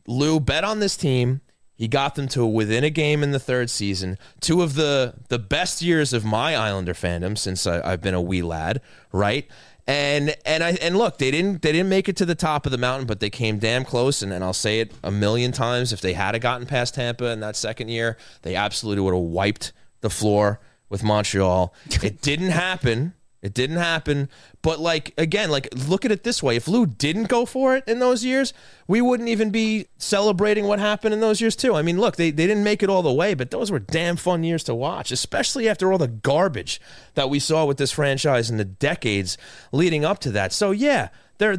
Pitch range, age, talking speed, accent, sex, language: 115-175 Hz, 30-49, 230 wpm, American, male, English